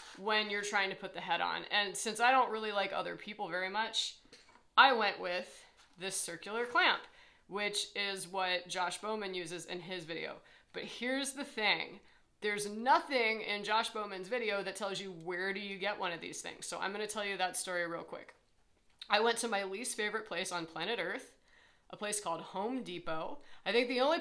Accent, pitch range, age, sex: American, 190-235 Hz, 30-49, female